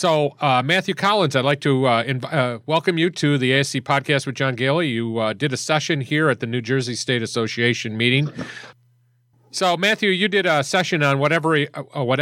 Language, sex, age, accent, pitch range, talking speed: English, male, 40-59, American, 110-140 Hz, 190 wpm